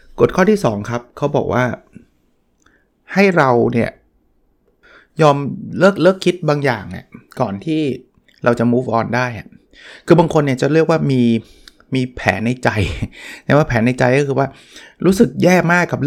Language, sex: Thai, male